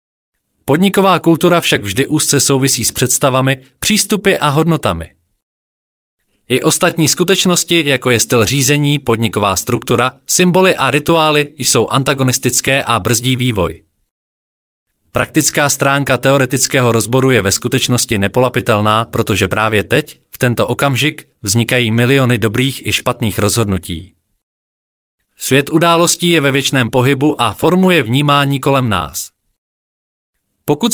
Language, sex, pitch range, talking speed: Czech, male, 115-150 Hz, 115 wpm